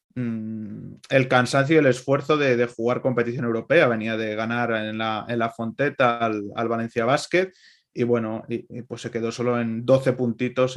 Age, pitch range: 20-39, 120-145 Hz